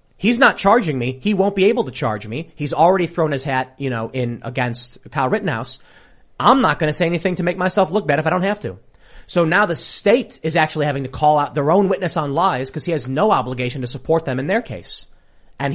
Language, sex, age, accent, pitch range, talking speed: English, male, 30-49, American, 115-150 Hz, 250 wpm